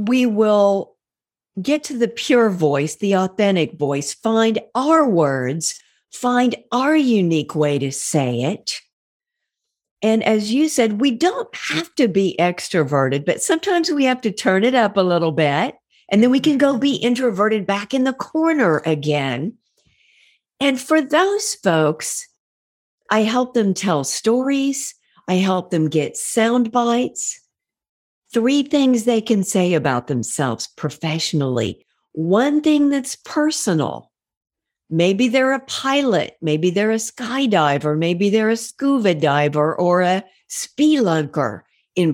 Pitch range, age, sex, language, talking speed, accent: 160-265 Hz, 50-69, female, English, 140 wpm, American